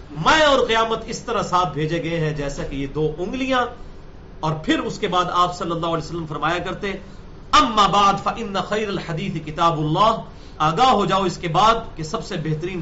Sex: male